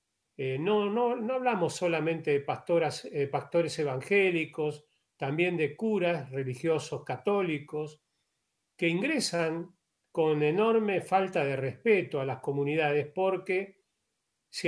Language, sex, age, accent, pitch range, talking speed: Spanish, male, 40-59, Argentinian, 140-170 Hz, 115 wpm